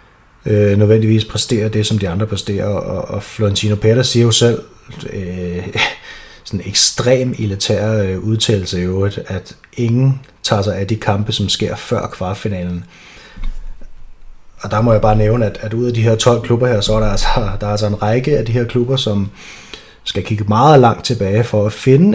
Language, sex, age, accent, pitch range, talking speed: Danish, male, 30-49, native, 100-120 Hz, 190 wpm